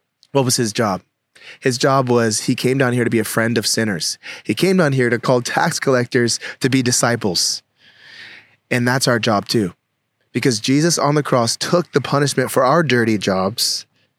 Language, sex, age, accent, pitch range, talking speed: English, male, 20-39, American, 115-140 Hz, 190 wpm